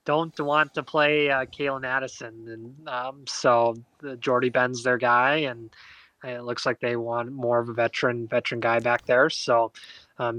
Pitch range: 120-140 Hz